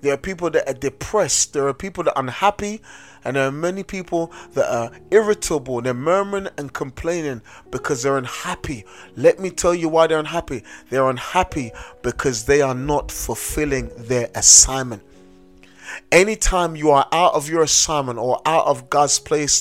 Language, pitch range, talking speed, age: English, 145-210 Hz, 170 wpm, 30-49